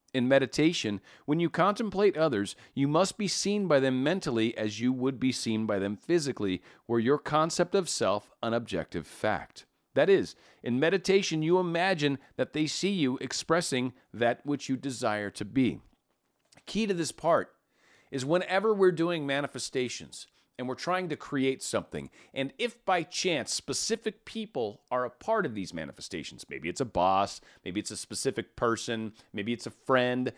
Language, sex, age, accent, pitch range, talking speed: English, male, 40-59, American, 125-175 Hz, 170 wpm